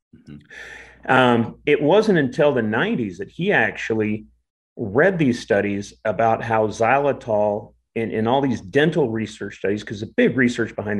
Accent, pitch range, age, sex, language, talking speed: American, 105-130 Hz, 30-49, male, English, 145 wpm